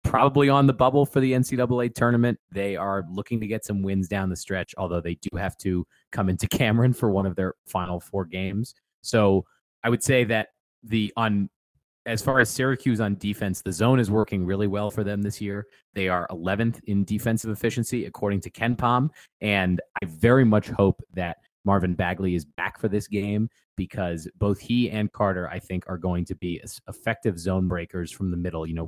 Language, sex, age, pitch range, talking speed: English, male, 30-49, 95-110 Hz, 205 wpm